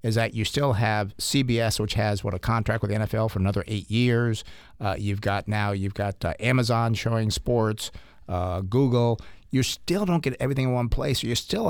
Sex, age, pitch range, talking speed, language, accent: male, 50-69, 105-125 Hz, 205 wpm, English, American